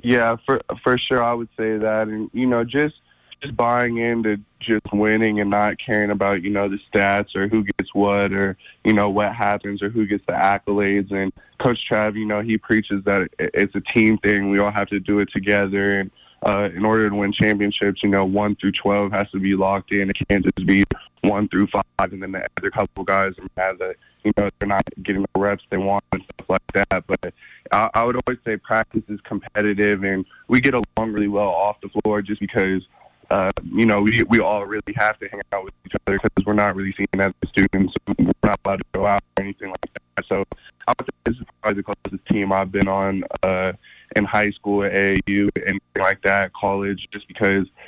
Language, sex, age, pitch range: English, male, 20-39, 100-105 Hz